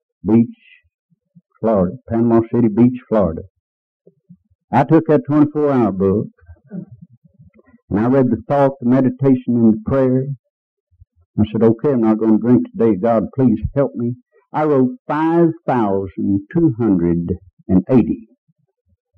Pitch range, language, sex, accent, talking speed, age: 110-150 Hz, English, male, American, 120 wpm, 60-79